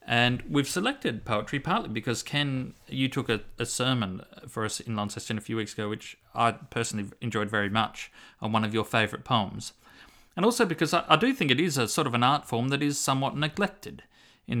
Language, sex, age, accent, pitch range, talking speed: English, male, 30-49, Australian, 110-135 Hz, 215 wpm